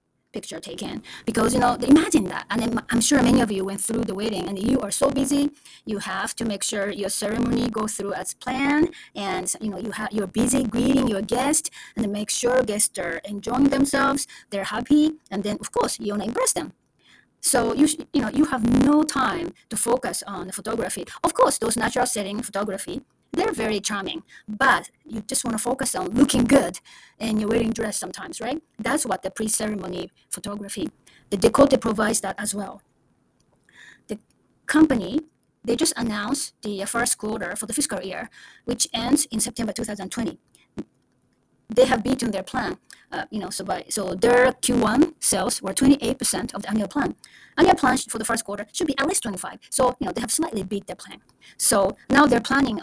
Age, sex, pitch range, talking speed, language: 30-49, female, 205-270 Hz, 195 wpm, English